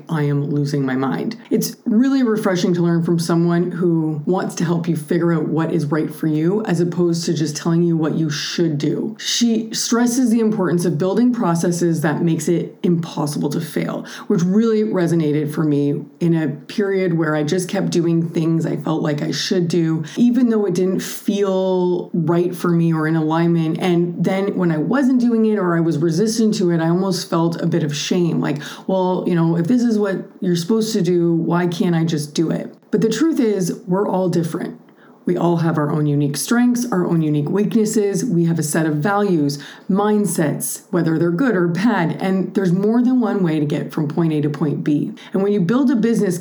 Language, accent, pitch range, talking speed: English, American, 160-200 Hz, 215 wpm